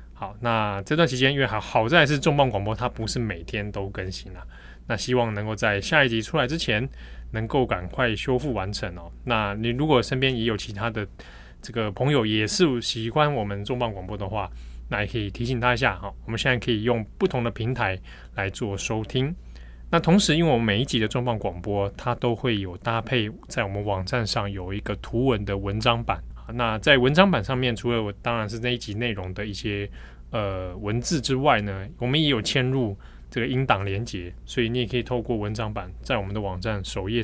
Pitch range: 100-125 Hz